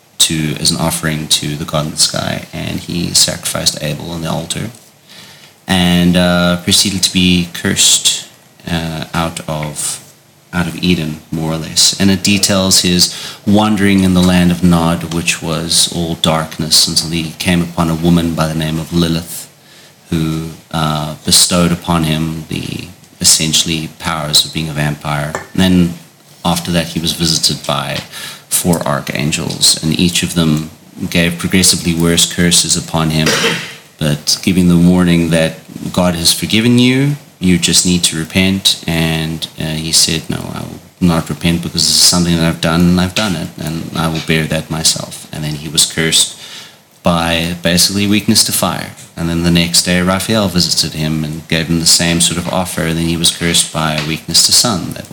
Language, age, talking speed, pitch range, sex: English, 30-49, 180 wpm, 80-90 Hz, male